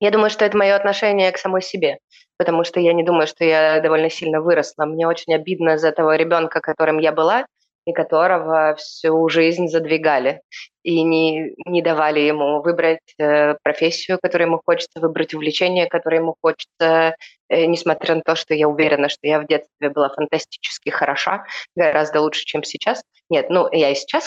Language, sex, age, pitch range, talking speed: Russian, female, 20-39, 155-170 Hz, 175 wpm